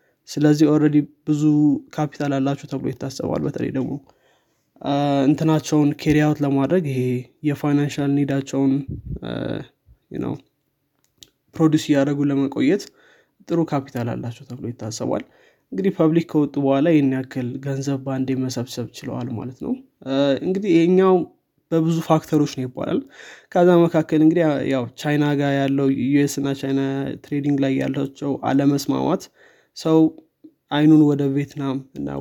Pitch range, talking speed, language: 135-155 Hz, 110 wpm, Amharic